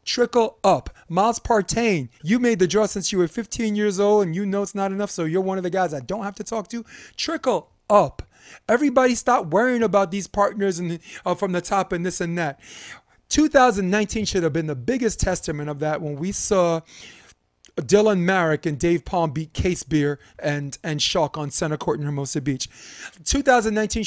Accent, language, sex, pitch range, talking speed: American, English, male, 160-210 Hz, 200 wpm